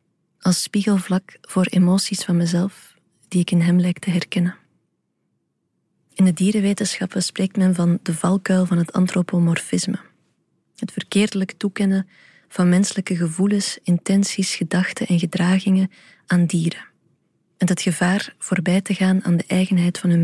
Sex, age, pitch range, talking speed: female, 20-39, 175-195 Hz, 140 wpm